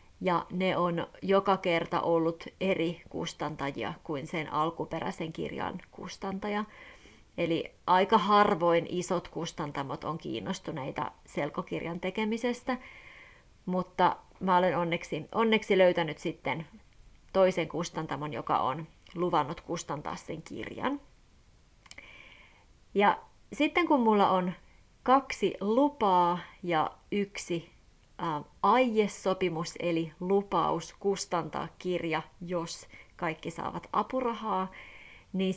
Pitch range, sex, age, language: 170-215 Hz, female, 30-49, Finnish